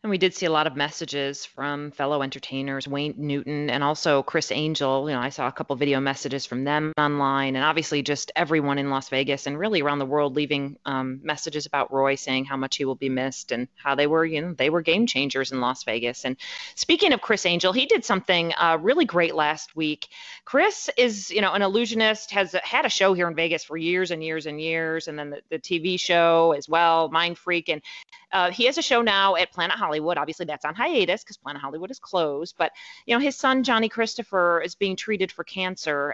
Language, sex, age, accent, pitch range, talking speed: English, female, 30-49, American, 145-185 Hz, 230 wpm